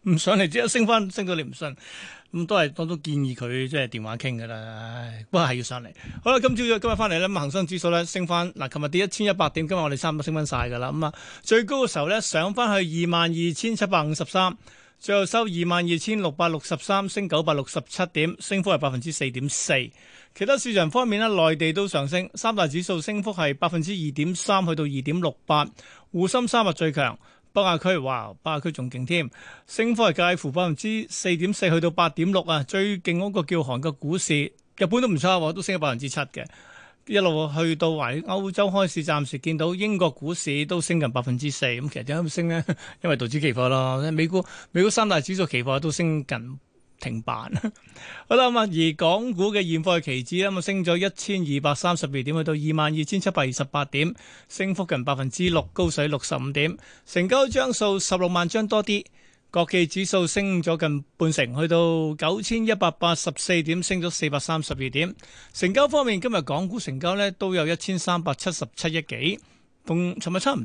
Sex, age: male, 30-49